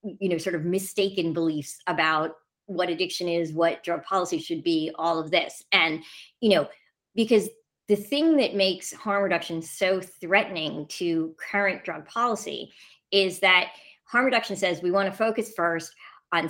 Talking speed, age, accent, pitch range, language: 165 wpm, 30-49, American, 165-195 Hz, English